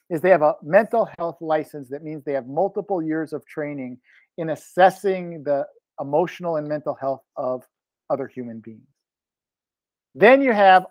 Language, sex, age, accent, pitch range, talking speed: English, male, 50-69, American, 150-180 Hz, 160 wpm